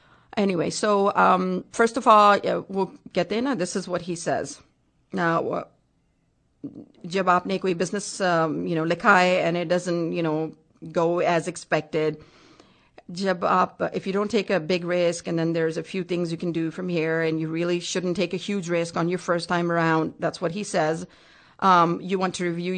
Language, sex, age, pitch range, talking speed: English, female, 40-59, 170-205 Hz, 190 wpm